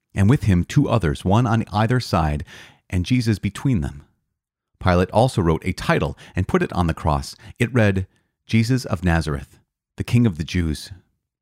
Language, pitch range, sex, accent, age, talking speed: English, 85-115 Hz, male, American, 30-49, 180 wpm